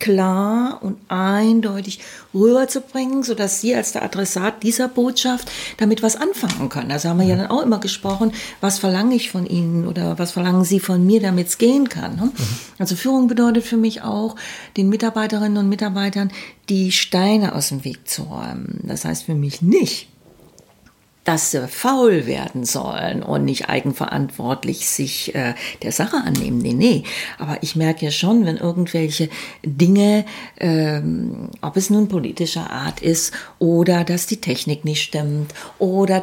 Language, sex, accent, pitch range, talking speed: German, female, German, 170-225 Hz, 160 wpm